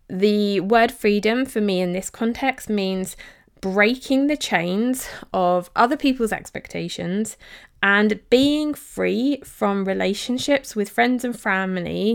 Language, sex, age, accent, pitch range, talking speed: English, female, 20-39, British, 180-225 Hz, 125 wpm